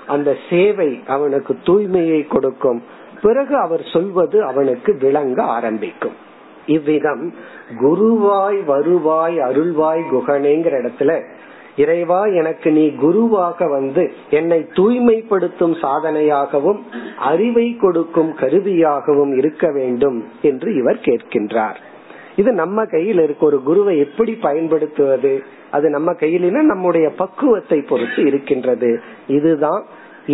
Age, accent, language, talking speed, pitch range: 50-69, native, Tamil, 95 wpm, 145-185 Hz